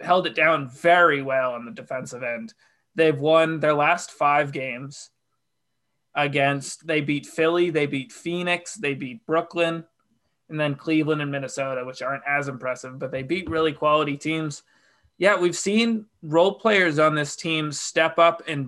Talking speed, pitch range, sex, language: 165 wpm, 140-175 Hz, male, English